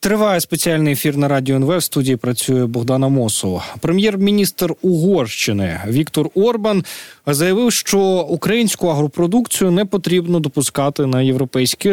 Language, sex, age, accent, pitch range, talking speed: Ukrainian, male, 20-39, native, 125-170 Hz, 120 wpm